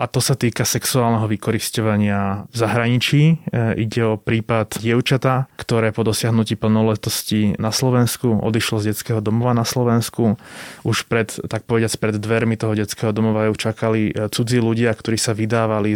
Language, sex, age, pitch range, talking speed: Slovak, male, 20-39, 110-120 Hz, 150 wpm